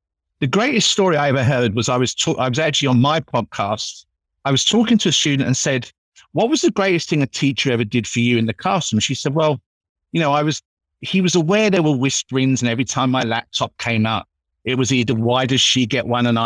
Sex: male